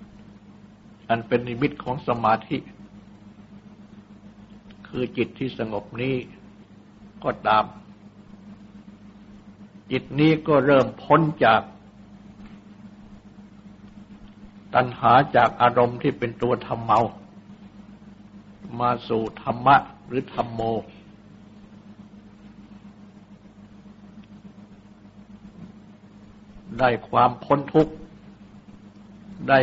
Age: 60-79